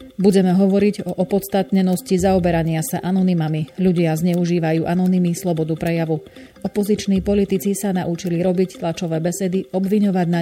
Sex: female